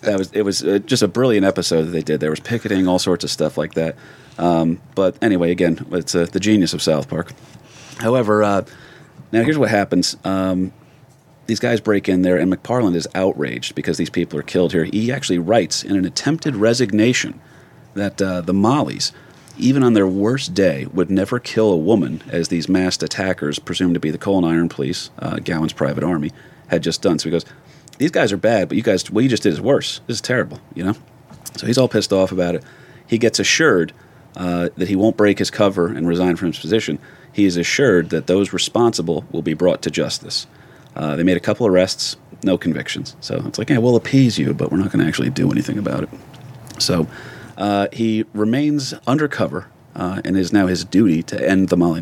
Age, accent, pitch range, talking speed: 40-59, American, 85-115 Hz, 215 wpm